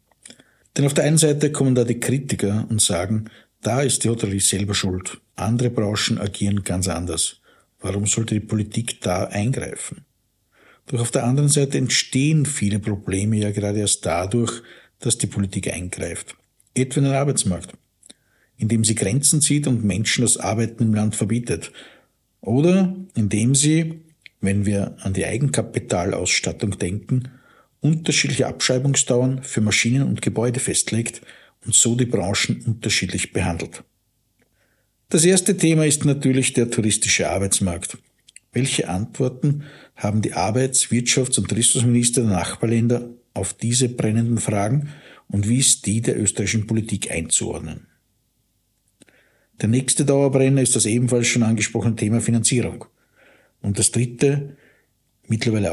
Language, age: German, 50-69